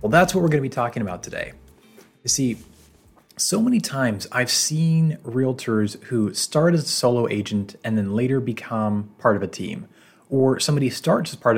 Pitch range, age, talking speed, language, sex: 105-140 Hz, 30-49, 185 wpm, English, male